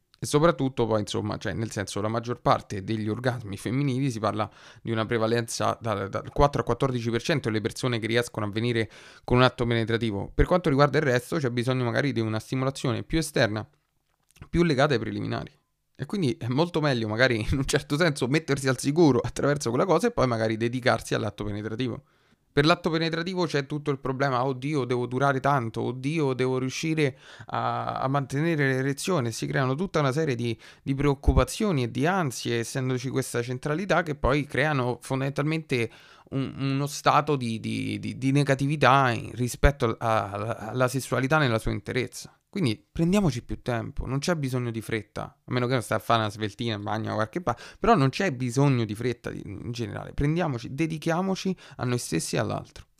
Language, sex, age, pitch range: Italian, male, 20-39, 115-140 Hz